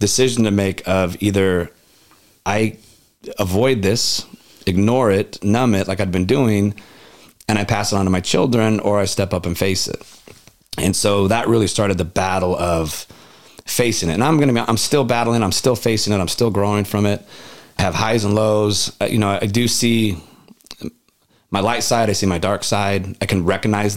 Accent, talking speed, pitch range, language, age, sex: American, 200 wpm, 95-115 Hz, English, 30-49, male